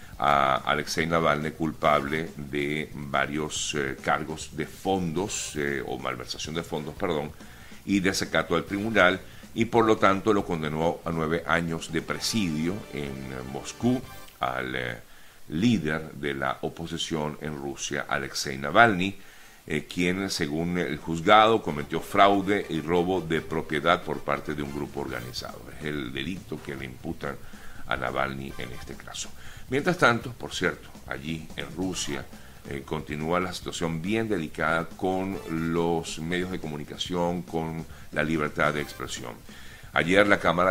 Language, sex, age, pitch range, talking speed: Spanish, male, 50-69, 75-90 Hz, 145 wpm